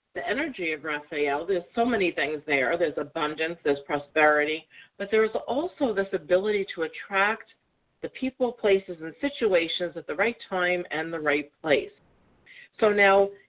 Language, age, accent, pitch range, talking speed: English, 50-69, American, 150-215 Hz, 155 wpm